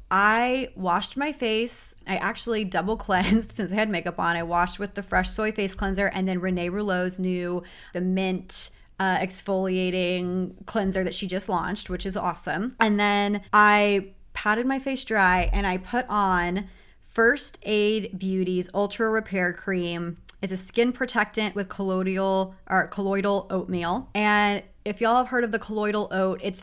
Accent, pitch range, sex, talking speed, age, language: American, 180-210 Hz, female, 165 wpm, 30-49, English